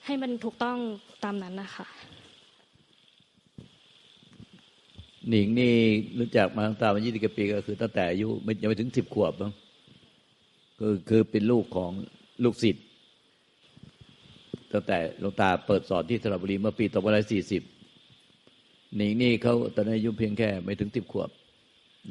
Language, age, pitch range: Thai, 60-79, 100-120 Hz